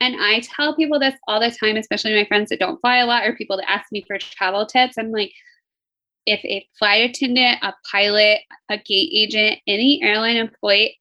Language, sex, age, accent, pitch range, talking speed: English, female, 20-39, American, 210-255 Hz, 205 wpm